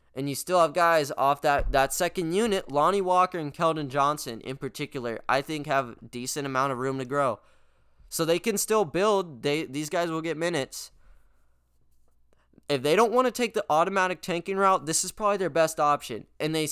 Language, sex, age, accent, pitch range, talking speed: English, male, 20-39, American, 130-185 Hz, 200 wpm